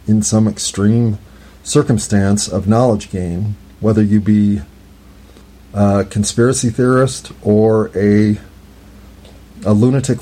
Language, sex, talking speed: English, male, 100 wpm